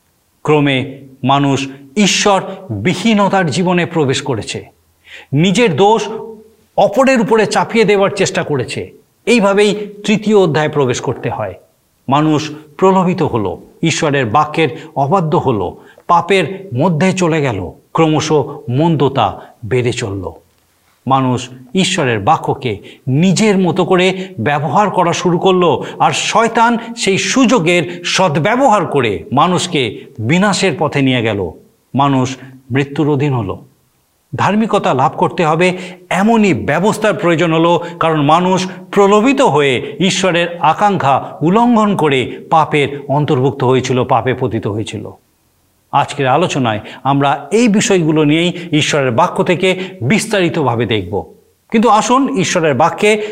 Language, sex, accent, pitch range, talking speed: Bengali, male, native, 135-195 Hz, 110 wpm